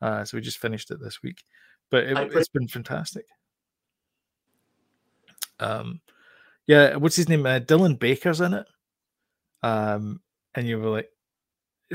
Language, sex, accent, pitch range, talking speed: English, male, British, 115-150 Hz, 135 wpm